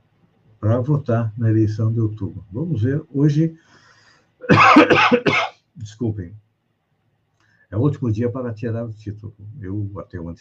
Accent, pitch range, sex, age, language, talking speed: Brazilian, 110-150 Hz, male, 60-79, Portuguese, 120 wpm